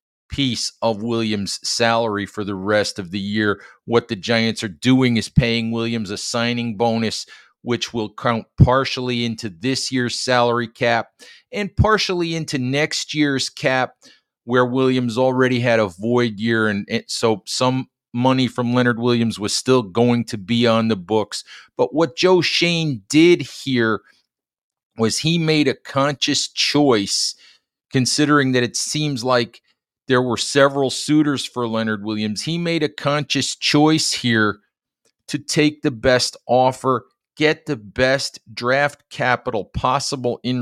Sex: male